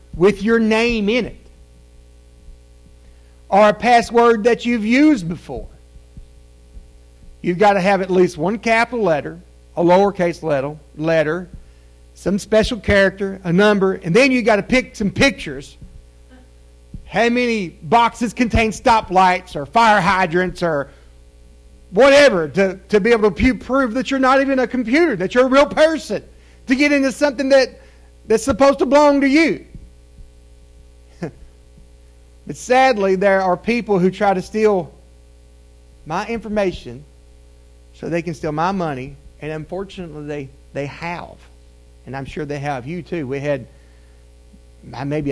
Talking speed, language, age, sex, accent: 140 wpm, English, 50-69, male, American